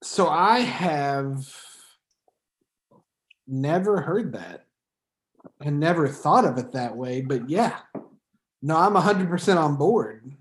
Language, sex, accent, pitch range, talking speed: English, male, American, 140-175 Hz, 125 wpm